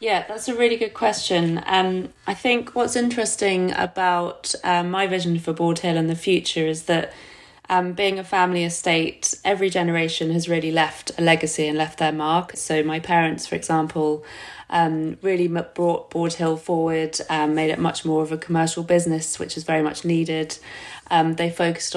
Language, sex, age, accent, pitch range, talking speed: English, female, 30-49, British, 155-175 Hz, 185 wpm